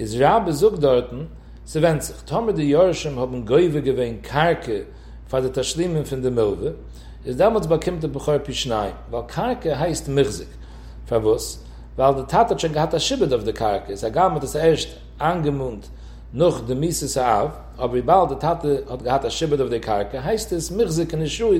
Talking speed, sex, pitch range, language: 155 wpm, male, 125-165 Hz, English